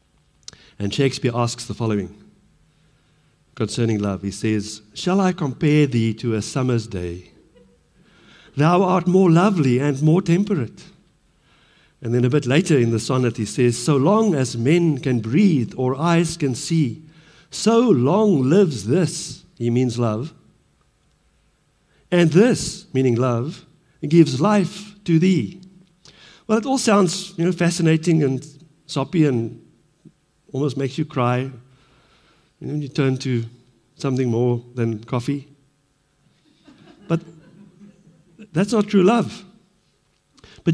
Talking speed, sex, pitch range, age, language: 130 wpm, male, 130-185 Hz, 60-79, English